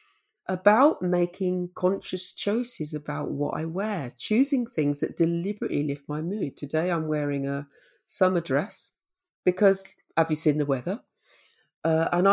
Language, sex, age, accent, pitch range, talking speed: English, female, 40-59, British, 165-270 Hz, 140 wpm